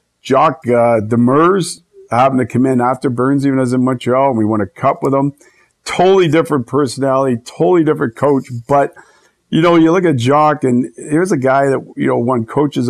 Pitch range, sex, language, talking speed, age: 120-145 Hz, male, English, 195 wpm, 50-69